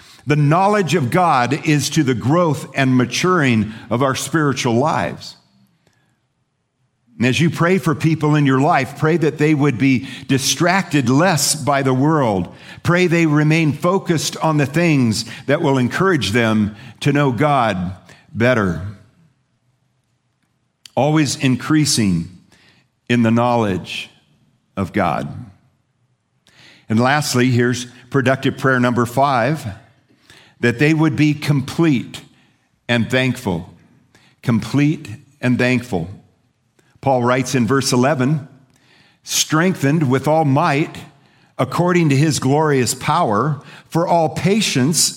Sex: male